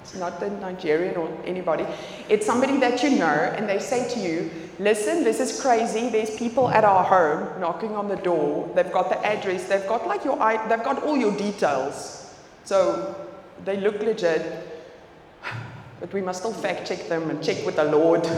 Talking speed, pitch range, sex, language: 185 wpm, 185-245 Hz, female, English